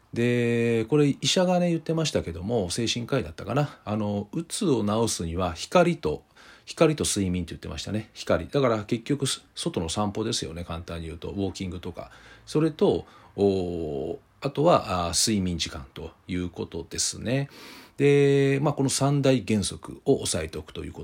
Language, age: Japanese, 40-59